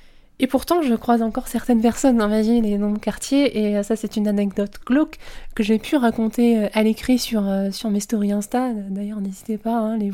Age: 20-39